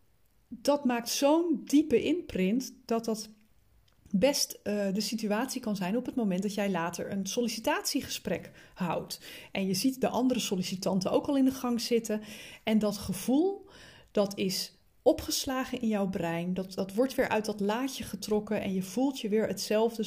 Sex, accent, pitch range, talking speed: female, Dutch, 195-255 Hz, 170 wpm